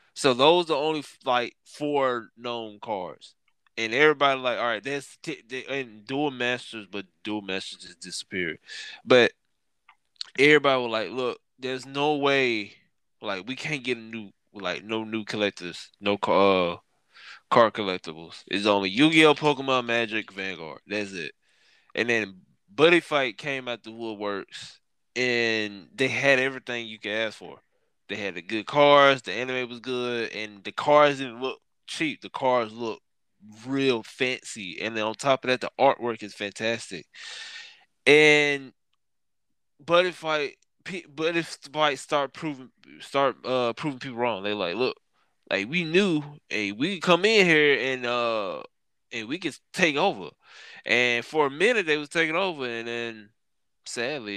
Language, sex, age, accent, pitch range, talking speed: English, male, 20-39, American, 110-145 Hz, 160 wpm